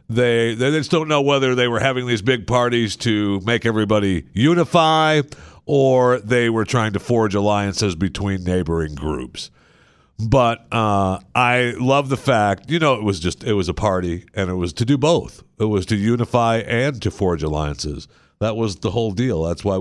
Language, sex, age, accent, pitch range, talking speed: English, male, 50-69, American, 90-120 Hz, 190 wpm